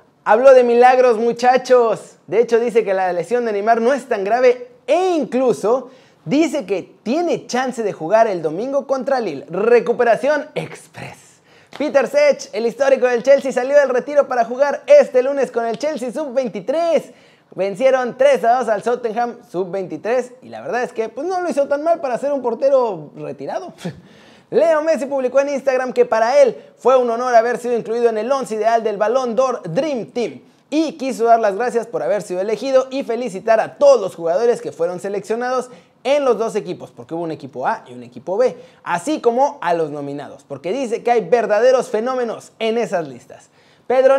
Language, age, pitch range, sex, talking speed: Spanish, 30-49, 225-275 Hz, male, 190 wpm